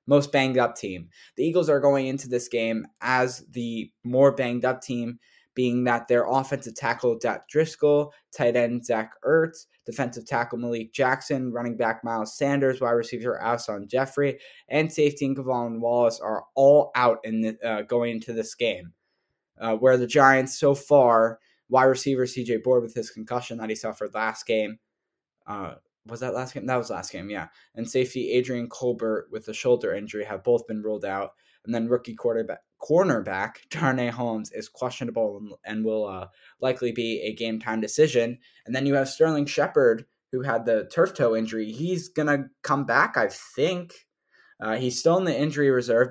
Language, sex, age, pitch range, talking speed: English, male, 10-29, 115-135 Hz, 180 wpm